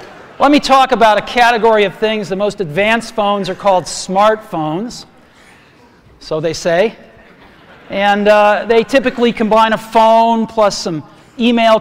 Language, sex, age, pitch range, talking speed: Italian, male, 40-59, 185-230 Hz, 140 wpm